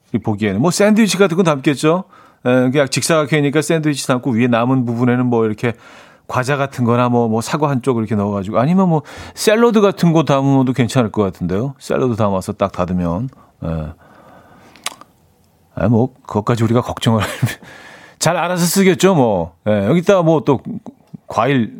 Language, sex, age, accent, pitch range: Korean, male, 40-59, native, 115-160 Hz